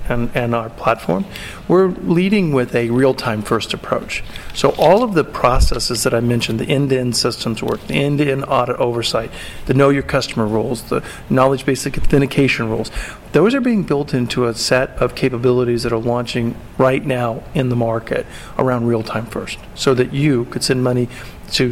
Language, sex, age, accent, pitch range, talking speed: English, male, 40-59, American, 120-140 Hz, 170 wpm